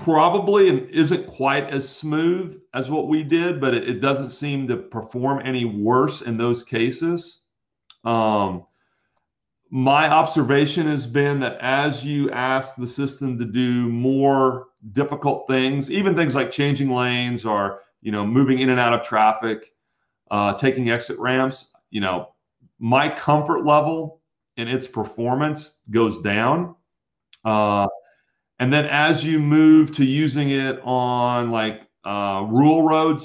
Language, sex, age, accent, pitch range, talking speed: English, male, 40-59, American, 115-145 Hz, 145 wpm